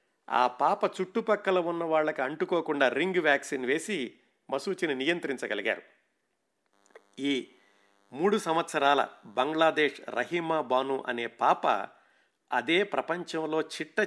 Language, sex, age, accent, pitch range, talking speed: Telugu, male, 50-69, native, 130-170 Hz, 95 wpm